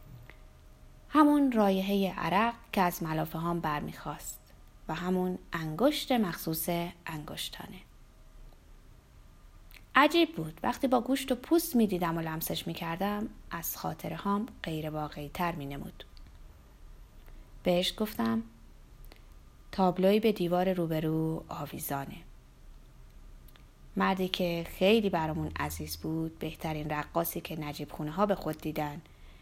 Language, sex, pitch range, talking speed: Persian, female, 155-205 Hz, 105 wpm